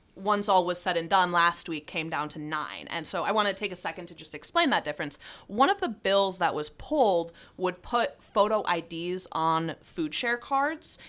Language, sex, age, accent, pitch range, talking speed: English, female, 30-49, American, 170-230 Hz, 215 wpm